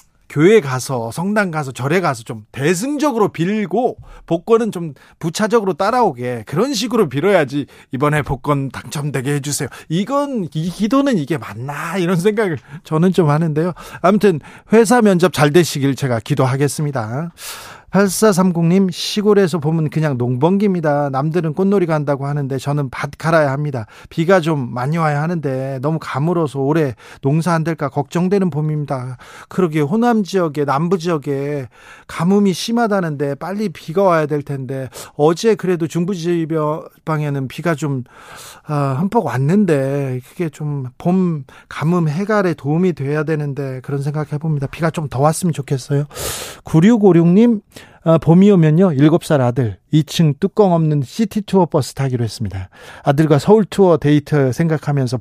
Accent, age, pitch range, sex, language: native, 40-59, 140-190 Hz, male, Korean